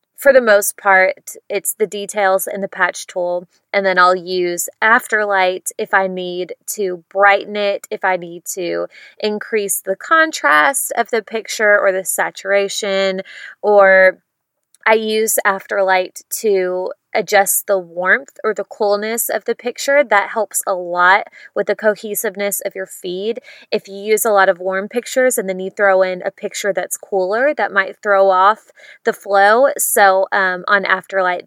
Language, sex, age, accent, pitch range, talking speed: English, female, 20-39, American, 190-220 Hz, 165 wpm